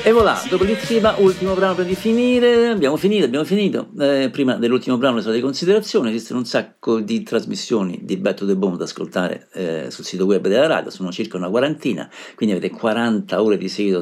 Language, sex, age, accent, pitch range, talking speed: Italian, male, 50-69, native, 105-165 Hz, 200 wpm